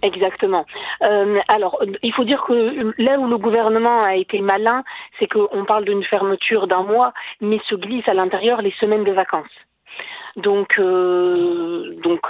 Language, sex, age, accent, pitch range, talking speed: French, female, 40-59, French, 195-325 Hz, 160 wpm